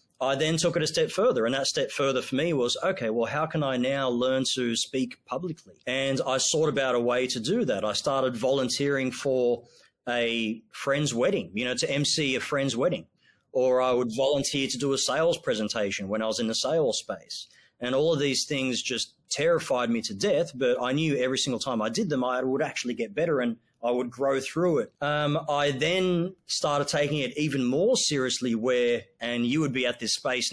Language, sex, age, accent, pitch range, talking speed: English, male, 30-49, Australian, 120-145 Hz, 215 wpm